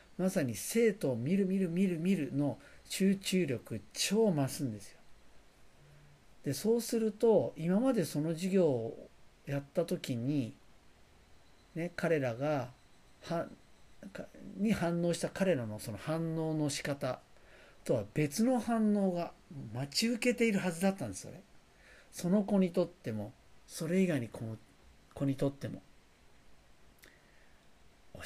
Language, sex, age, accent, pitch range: Japanese, male, 50-69, native, 115-185 Hz